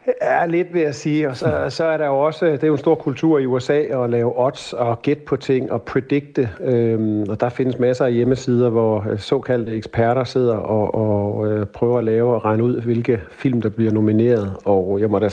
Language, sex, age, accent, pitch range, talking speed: Danish, male, 50-69, native, 115-140 Hz, 225 wpm